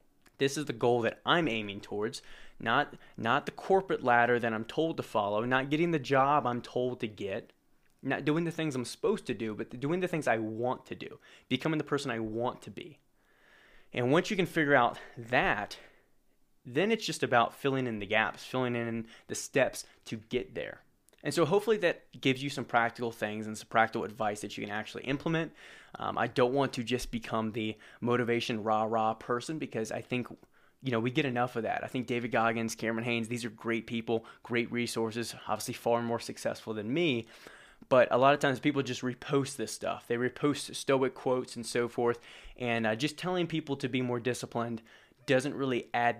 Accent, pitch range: American, 115-140 Hz